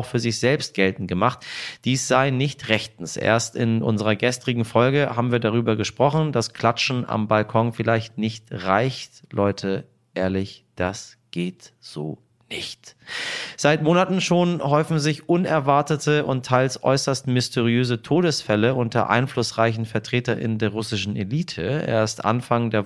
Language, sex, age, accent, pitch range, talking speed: German, male, 30-49, German, 110-130 Hz, 135 wpm